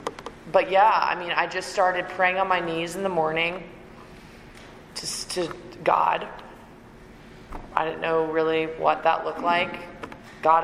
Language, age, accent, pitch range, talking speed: English, 20-39, American, 160-175 Hz, 145 wpm